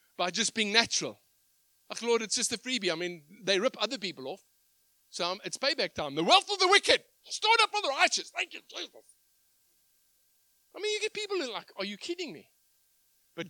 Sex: male